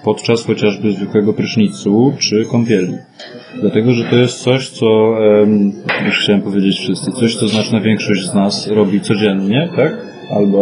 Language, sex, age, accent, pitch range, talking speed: Polish, male, 20-39, native, 100-125 Hz, 145 wpm